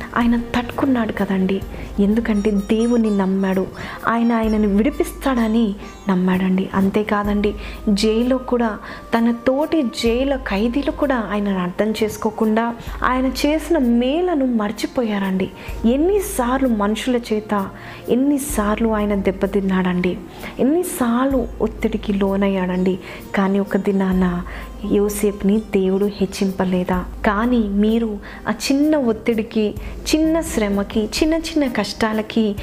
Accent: native